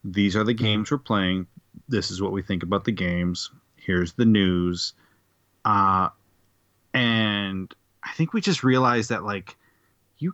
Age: 30-49